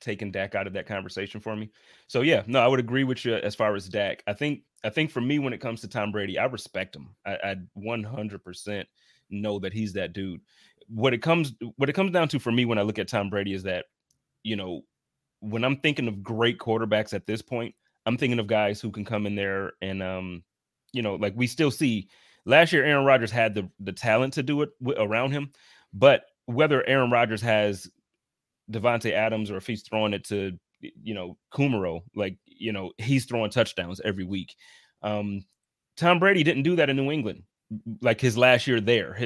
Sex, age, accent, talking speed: male, 30-49, American, 215 wpm